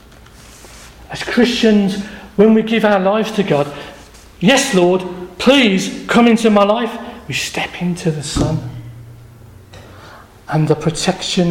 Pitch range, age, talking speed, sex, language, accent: 185-235 Hz, 40-59, 125 wpm, male, English, British